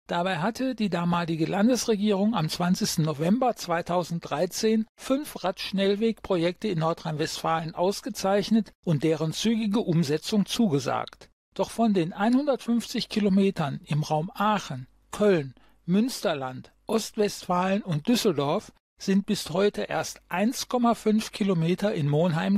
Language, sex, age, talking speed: German, male, 60-79, 105 wpm